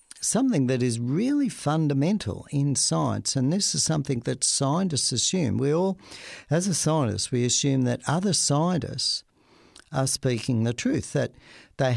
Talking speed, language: 150 wpm, English